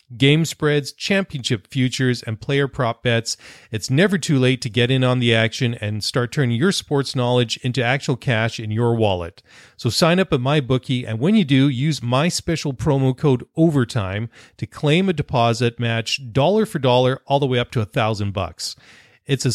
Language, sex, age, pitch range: English, male, 40-59, 115-145 Hz